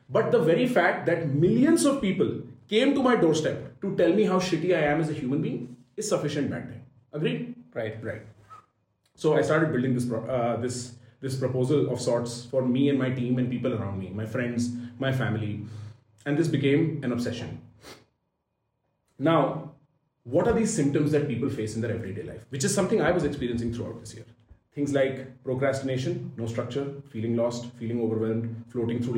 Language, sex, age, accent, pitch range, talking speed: Hindi, male, 30-49, native, 115-145 Hz, 190 wpm